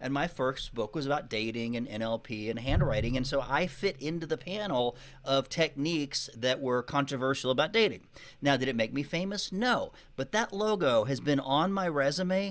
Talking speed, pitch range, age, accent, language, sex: 190 wpm, 130-175 Hz, 40-59, American, English, male